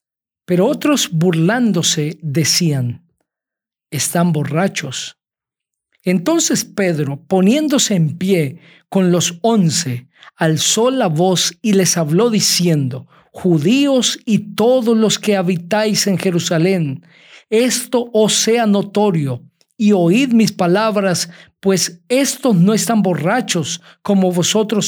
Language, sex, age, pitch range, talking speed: Spanish, male, 50-69, 160-210 Hz, 105 wpm